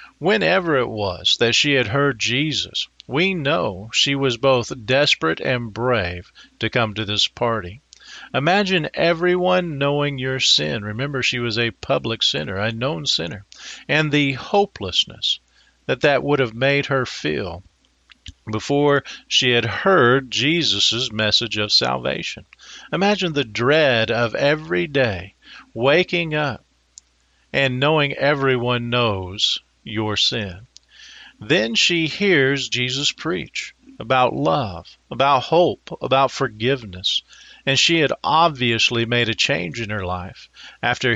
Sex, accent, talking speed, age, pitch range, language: male, American, 130 wpm, 50-69, 115-145 Hz, English